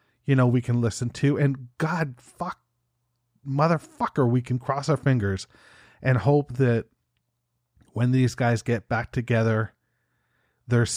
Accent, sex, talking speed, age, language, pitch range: American, male, 135 wpm, 40-59, English, 105-125 Hz